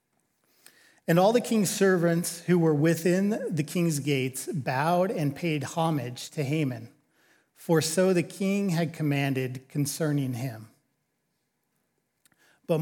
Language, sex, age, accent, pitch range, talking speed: English, male, 40-59, American, 145-180 Hz, 120 wpm